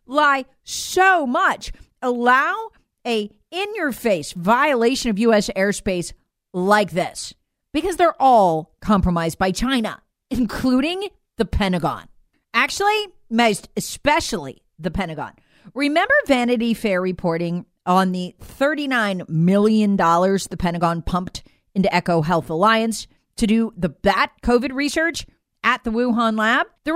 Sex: female